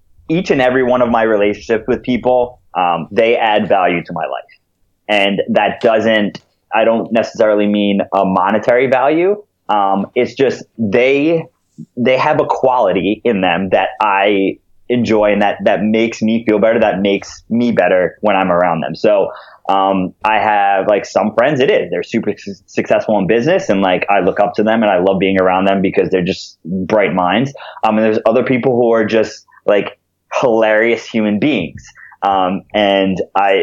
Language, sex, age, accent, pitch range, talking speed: English, male, 20-39, American, 95-115 Hz, 180 wpm